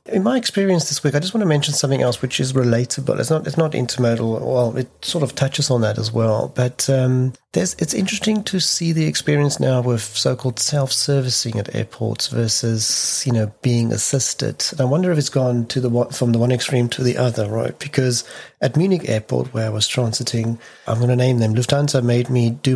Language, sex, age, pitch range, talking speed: English, male, 40-59, 115-135 Hz, 215 wpm